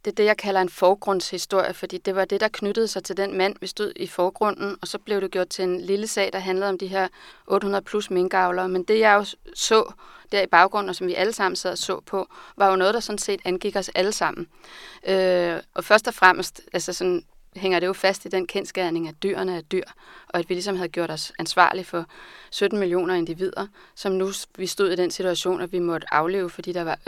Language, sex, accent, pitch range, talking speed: Danish, female, native, 180-200 Hz, 240 wpm